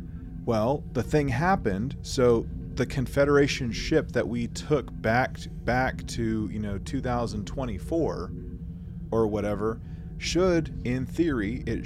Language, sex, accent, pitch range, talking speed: English, male, American, 85-125 Hz, 115 wpm